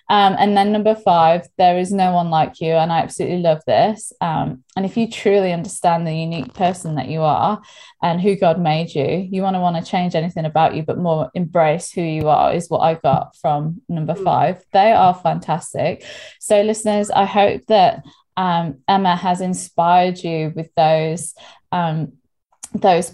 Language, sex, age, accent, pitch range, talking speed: English, female, 20-39, British, 165-205 Hz, 185 wpm